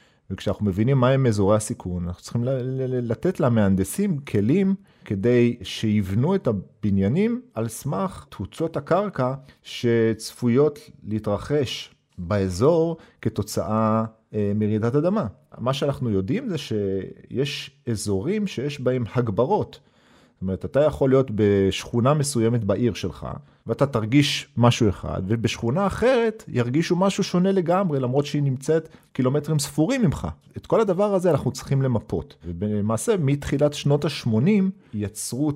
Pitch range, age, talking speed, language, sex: 105-155 Hz, 40-59, 120 wpm, Hebrew, male